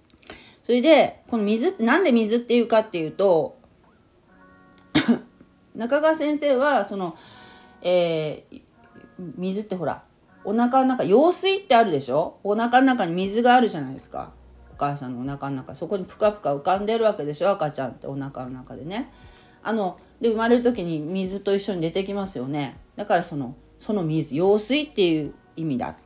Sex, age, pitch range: female, 40-59, 150-230 Hz